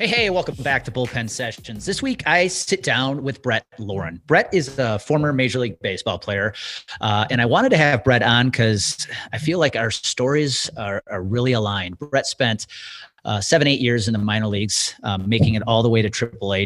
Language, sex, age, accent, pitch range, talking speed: English, male, 30-49, American, 105-135 Hz, 215 wpm